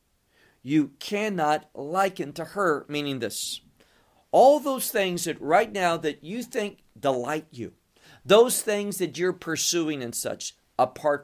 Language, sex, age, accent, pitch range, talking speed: English, male, 50-69, American, 140-200 Hz, 140 wpm